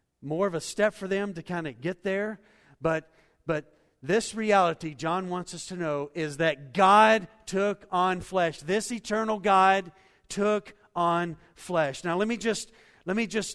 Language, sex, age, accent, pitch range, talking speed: English, male, 50-69, American, 130-180 Hz, 175 wpm